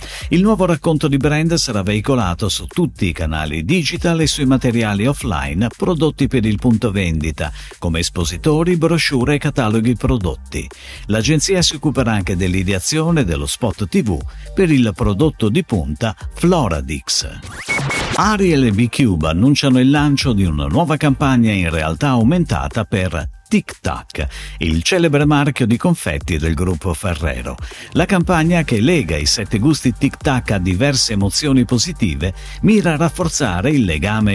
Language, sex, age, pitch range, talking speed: Italian, male, 50-69, 95-150 Hz, 145 wpm